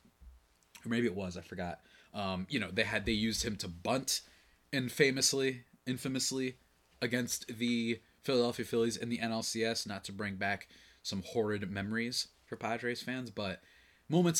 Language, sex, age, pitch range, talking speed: English, male, 20-39, 90-125 Hz, 160 wpm